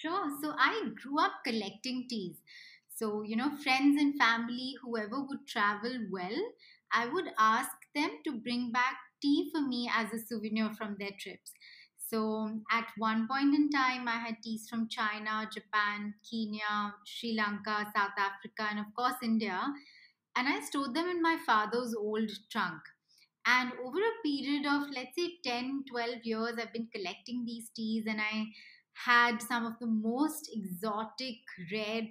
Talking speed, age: 160 wpm, 20-39